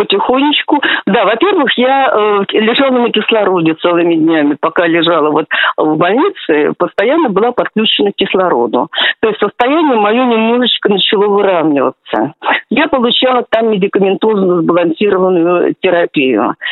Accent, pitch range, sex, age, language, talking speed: native, 195-275 Hz, female, 50-69, Russian, 120 wpm